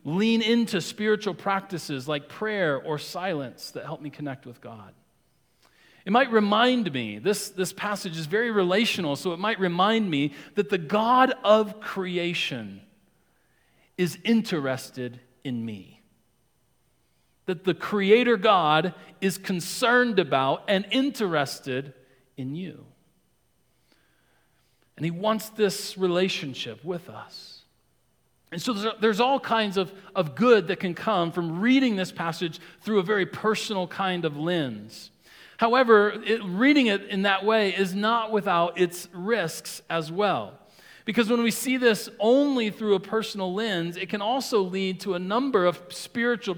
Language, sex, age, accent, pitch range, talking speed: English, male, 40-59, American, 165-220 Hz, 140 wpm